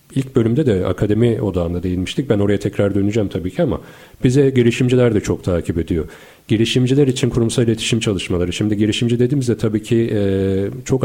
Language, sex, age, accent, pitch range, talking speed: Turkish, male, 40-59, native, 95-125 Hz, 165 wpm